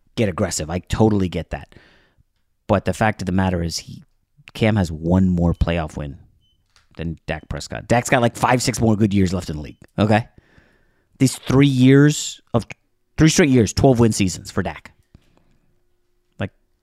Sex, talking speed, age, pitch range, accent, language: male, 175 wpm, 30-49, 95-125 Hz, American, English